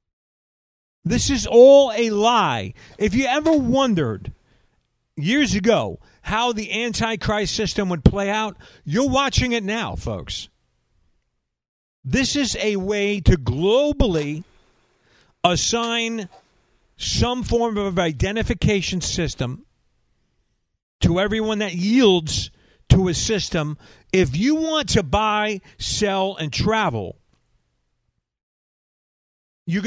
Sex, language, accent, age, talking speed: male, English, American, 50-69, 100 wpm